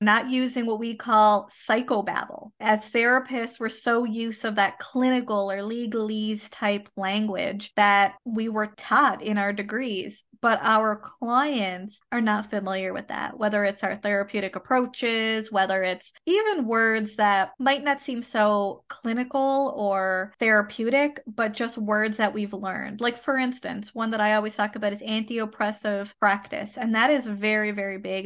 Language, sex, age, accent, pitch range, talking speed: English, female, 20-39, American, 200-235 Hz, 155 wpm